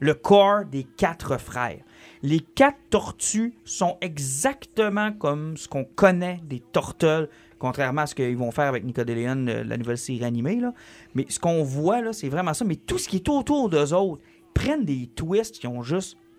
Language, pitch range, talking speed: French, 130-170 Hz, 185 wpm